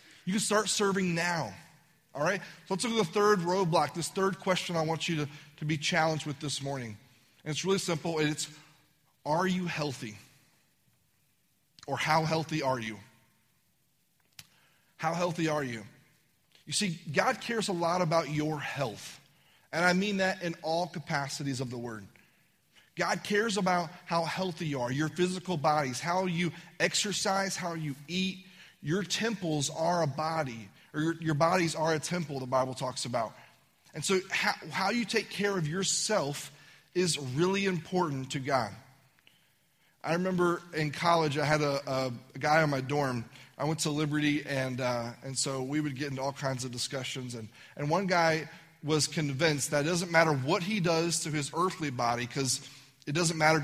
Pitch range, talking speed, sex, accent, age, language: 140-175 Hz, 180 wpm, male, American, 30-49, English